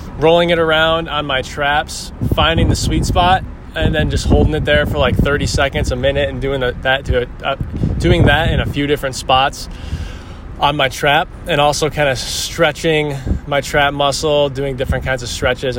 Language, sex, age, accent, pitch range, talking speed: English, male, 20-39, American, 115-150 Hz, 180 wpm